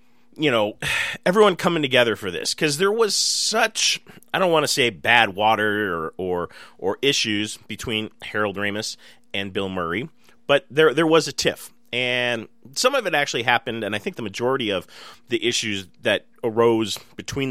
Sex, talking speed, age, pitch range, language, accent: male, 175 wpm, 30-49, 105-145 Hz, English, American